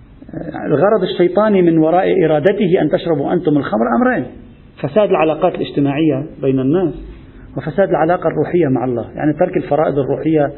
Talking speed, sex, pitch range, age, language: 135 wpm, male, 130-175 Hz, 40-59, Arabic